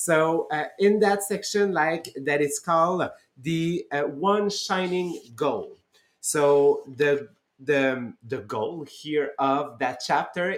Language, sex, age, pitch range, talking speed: English, male, 30-49, 145-185 Hz, 130 wpm